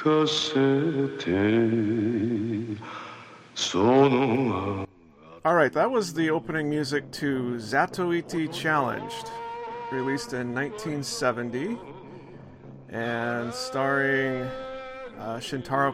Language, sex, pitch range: English, male, 120-150 Hz